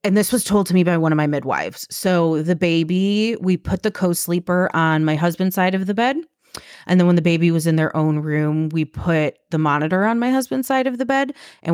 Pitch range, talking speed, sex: 155-175 Hz, 240 wpm, female